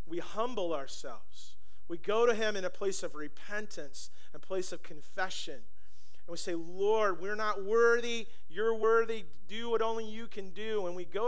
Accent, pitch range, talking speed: American, 155-210 Hz, 180 wpm